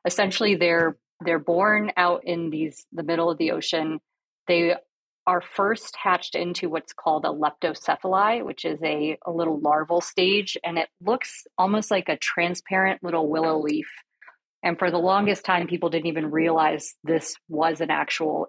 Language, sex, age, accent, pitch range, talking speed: English, female, 30-49, American, 160-185 Hz, 165 wpm